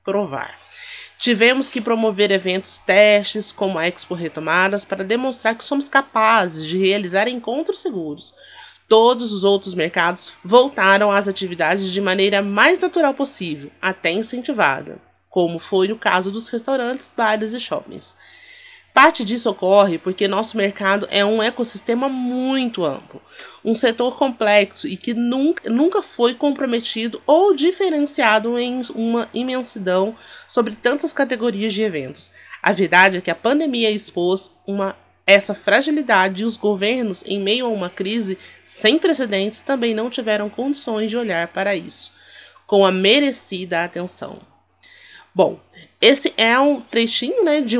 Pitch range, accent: 195-250 Hz, Brazilian